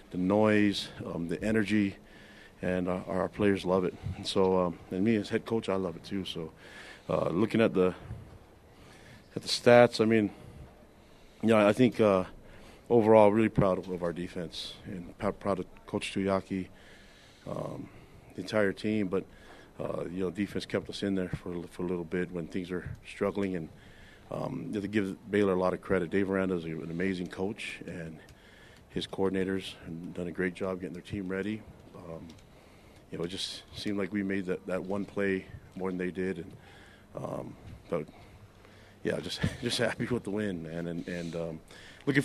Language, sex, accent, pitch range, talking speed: English, male, American, 90-110 Hz, 190 wpm